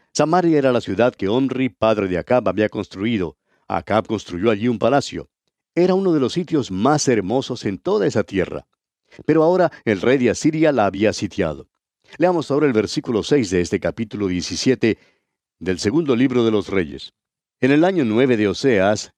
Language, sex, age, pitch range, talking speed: Spanish, male, 50-69, 100-130 Hz, 180 wpm